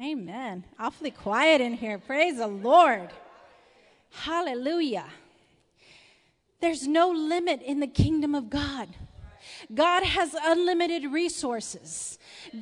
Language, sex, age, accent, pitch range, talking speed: English, female, 30-49, American, 320-380 Hz, 100 wpm